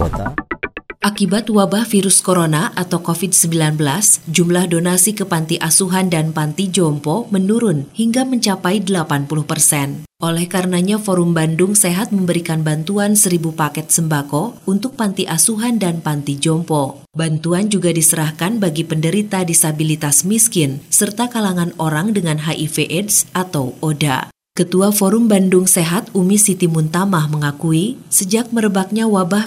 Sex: female